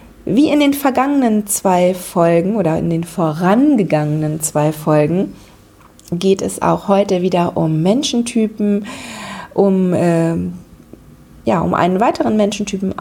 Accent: German